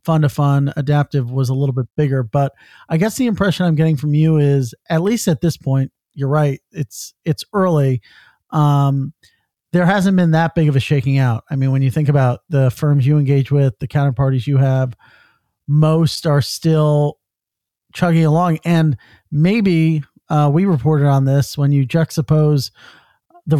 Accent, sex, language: American, male, English